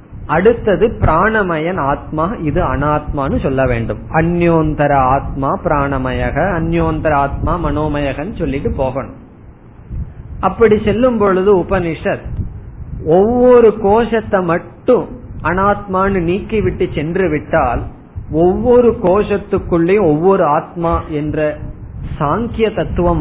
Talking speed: 85 wpm